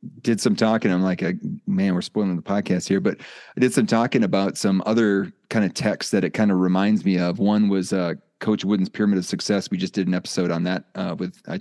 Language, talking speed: English, 245 wpm